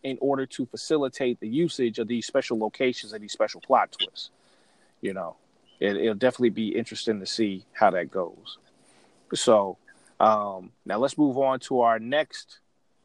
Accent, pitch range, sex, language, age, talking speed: American, 120-150 Hz, male, English, 30-49, 165 wpm